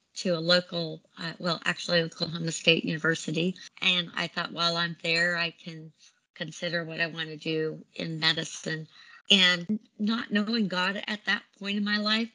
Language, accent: English, American